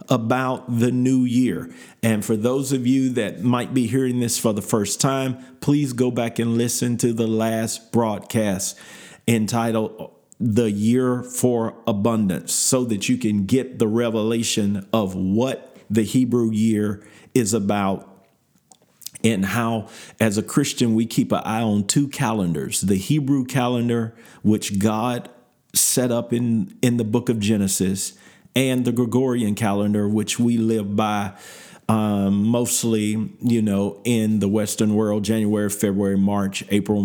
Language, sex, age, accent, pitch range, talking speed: English, male, 40-59, American, 110-125 Hz, 145 wpm